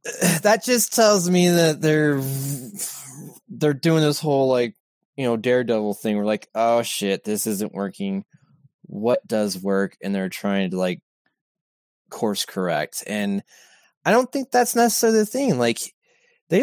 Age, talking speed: 20-39, 150 wpm